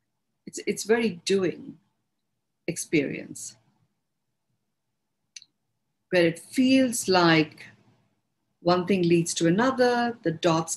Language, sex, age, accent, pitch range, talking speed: English, female, 50-69, Indian, 165-245 Hz, 85 wpm